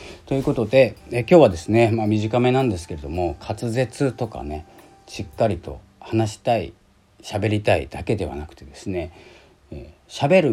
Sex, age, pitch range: male, 40-59, 80-110 Hz